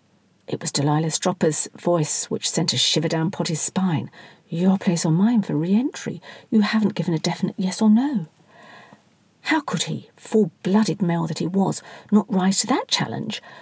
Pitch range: 165-215 Hz